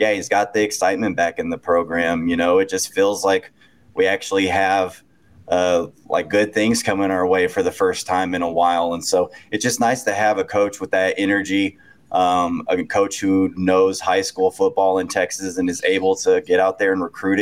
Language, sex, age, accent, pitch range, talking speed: English, male, 20-39, American, 95-105 Hz, 215 wpm